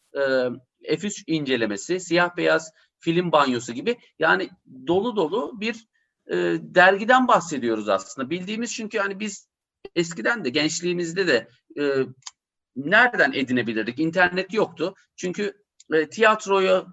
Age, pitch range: 50-69, 160-230 Hz